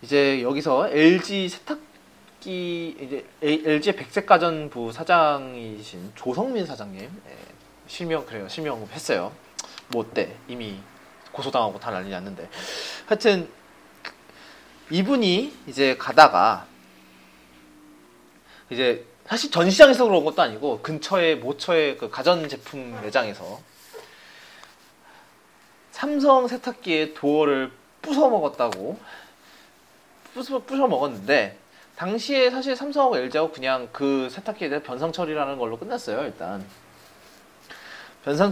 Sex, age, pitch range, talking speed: male, 30-49, 135-200 Hz, 85 wpm